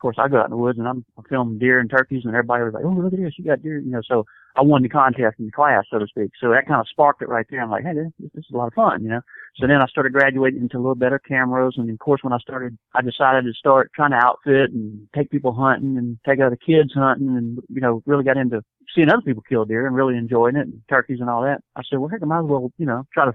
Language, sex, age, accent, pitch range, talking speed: English, male, 40-59, American, 120-140 Hz, 310 wpm